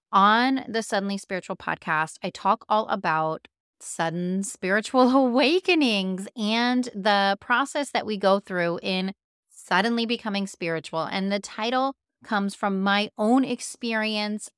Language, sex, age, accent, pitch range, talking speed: English, female, 30-49, American, 180-235 Hz, 130 wpm